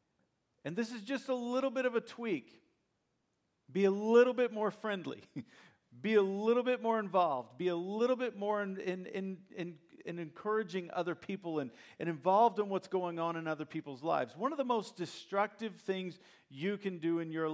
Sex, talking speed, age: male, 185 wpm, 50-69